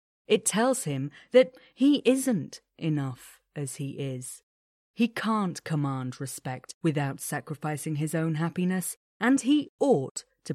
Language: English